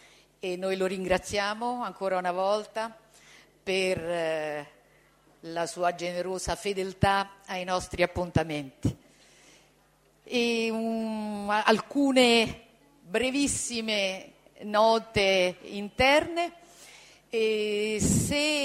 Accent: native